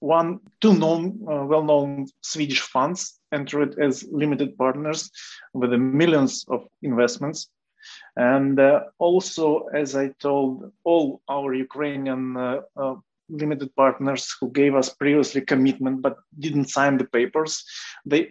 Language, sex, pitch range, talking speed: English, male, 135-180 Hz, 135 wpm